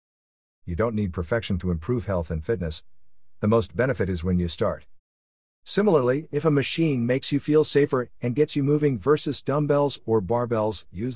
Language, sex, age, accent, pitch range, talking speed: English, male, 50-69, American, 85-115 Hz, 175 wpm